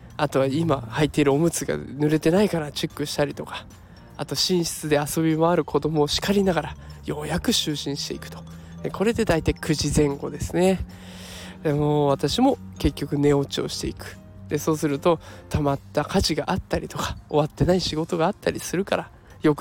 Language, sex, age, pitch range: Japanese, male, 20-39, 140-175 Hz